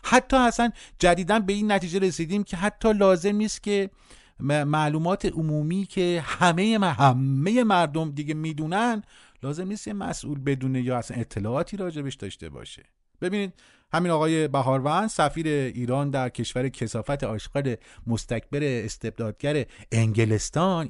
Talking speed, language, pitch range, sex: 120 wpm, Persian, 125-185 Hz, male